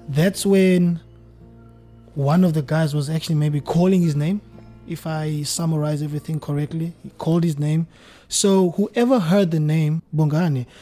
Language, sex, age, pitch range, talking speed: English, male, 20-39, 140-170 Hz, 150 wpm